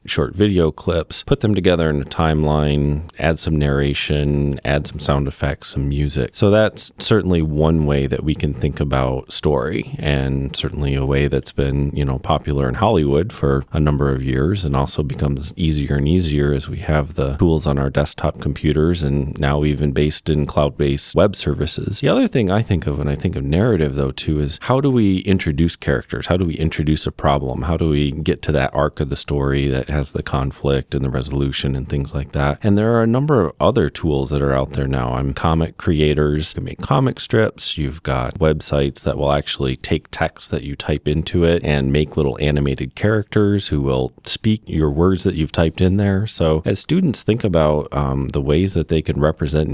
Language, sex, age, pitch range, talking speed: English, male, 30-49, 70-85 Hz, 210 wpm